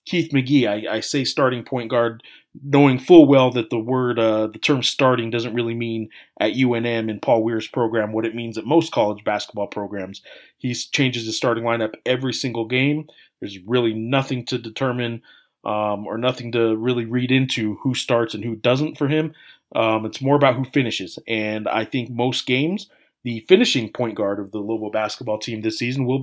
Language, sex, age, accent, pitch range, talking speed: English, male, 30-49, American, 110-135 Hz, 195 wpm